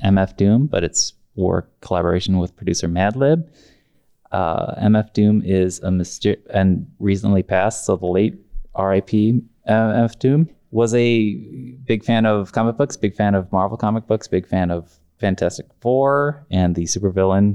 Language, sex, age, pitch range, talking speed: English, male, 20-39, 90-110 Hz, 155 wpm